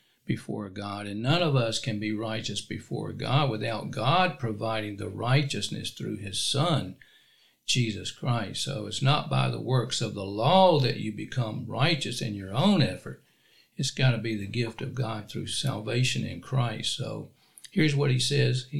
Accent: American